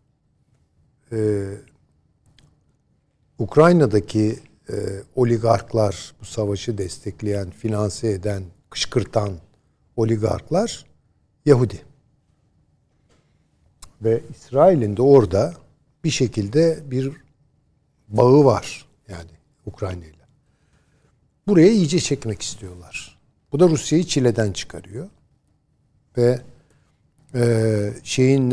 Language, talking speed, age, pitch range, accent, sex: Turkish, 75 wpm, 60-79, 100-140 Hz, native, male